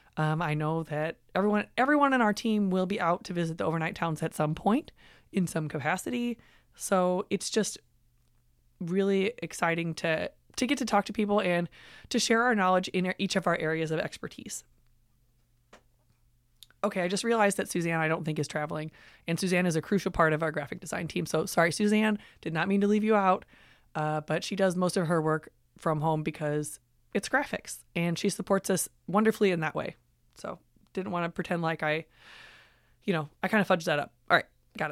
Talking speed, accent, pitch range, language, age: 205 wpm, American, 155-200 Hz, English, 20-39